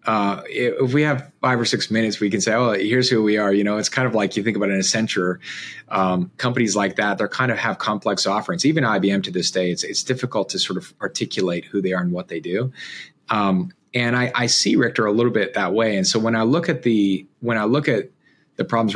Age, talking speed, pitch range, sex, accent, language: 30-49, 255 wpm, 95-120 Hz, male, American, English